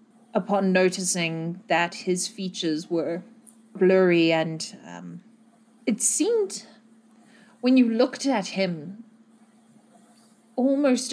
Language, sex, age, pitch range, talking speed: English, female, 30-49, 180-230 Hz, 90 wpm